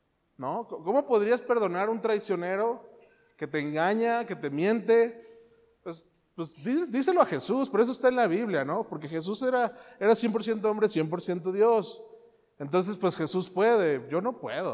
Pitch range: 150-210 Hz